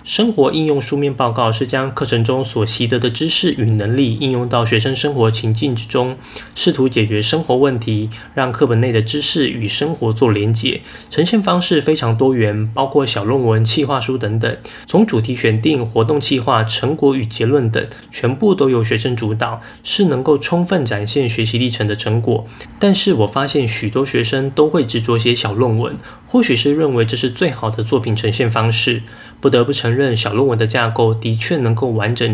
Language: Chinese